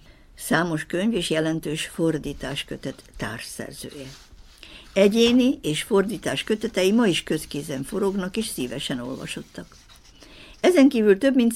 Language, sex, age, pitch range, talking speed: Hungarian, female, 60-79, 150-215 Hz, 115 wpm